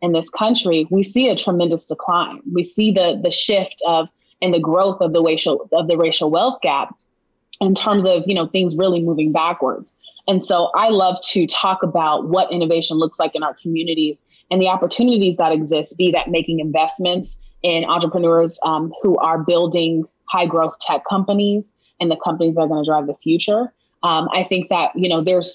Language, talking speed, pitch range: English, 195 wpm, 165-190 Hz